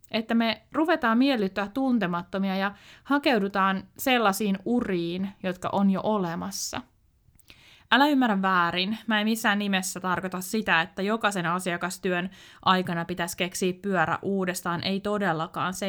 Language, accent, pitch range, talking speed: Finnish, native, 185-240 Hz, 125 wpm